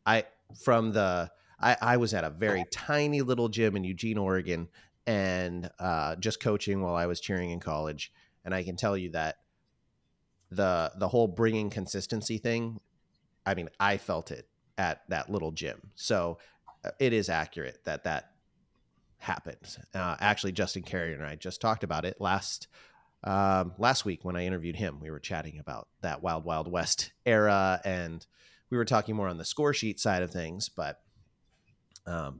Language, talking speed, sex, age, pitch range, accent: English, 175 wpm, male, 30-49, 85-110 Hz, American